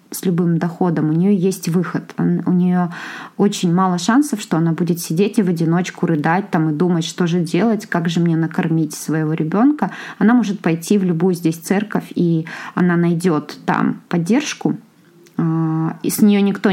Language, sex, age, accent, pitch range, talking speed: Russian, female, 20-39, native, 160-200 Hz, 175 wpm